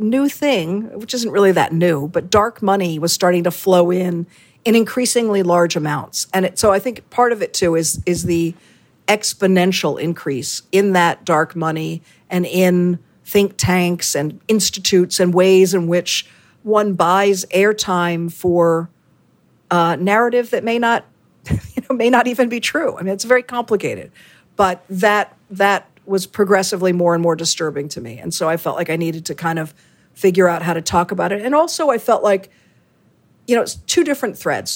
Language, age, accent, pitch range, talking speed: English, 50-69, American, 175-215 Hz, 185 wpm